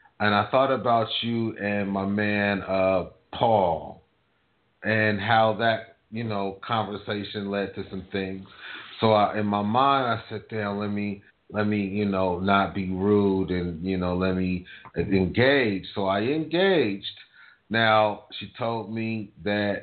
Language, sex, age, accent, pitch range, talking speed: English, male, 30-49, American, 95-110 Hz, 155 wpm